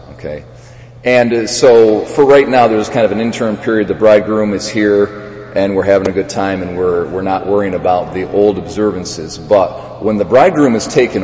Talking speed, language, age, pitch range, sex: 200 wpm, English, 40-59, 95-115 Hz, male